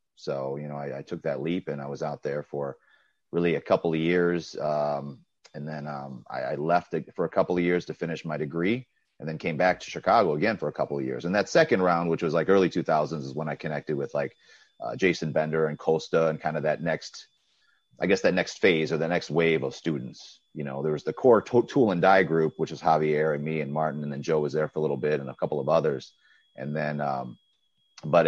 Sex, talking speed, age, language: male, 255 wpm, 30-49, English